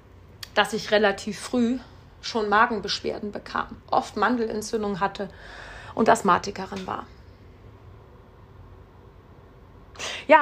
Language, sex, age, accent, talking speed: German, female, 30-49, German, 80 wpm